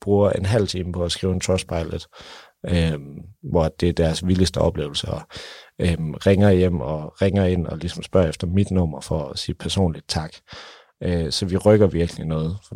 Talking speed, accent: 200 wpm, native